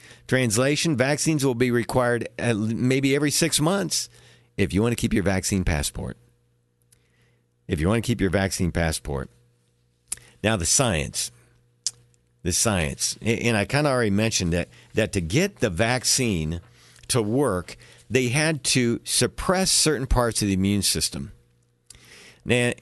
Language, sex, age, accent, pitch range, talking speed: English, male, 50-69, American, 90-130 Hz, 145 wpm